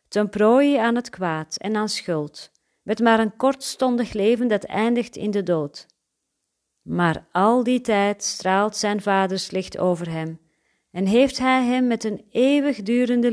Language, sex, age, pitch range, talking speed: Dutch, female, 40-59, 175-245 Hz, 160 wpm